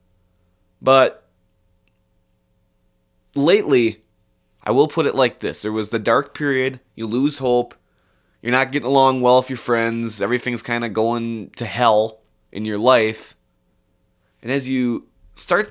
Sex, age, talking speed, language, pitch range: male, 20-39, 140 wpm, English, 105-140 Hz